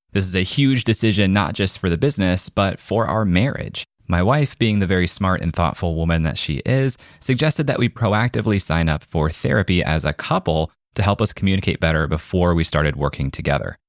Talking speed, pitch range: 205 wpm, 80-110 Hz